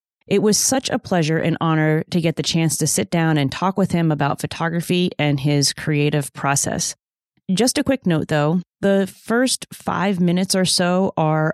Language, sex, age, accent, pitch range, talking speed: English, female, 30-49, American, 150-185 Hz, 185 wpm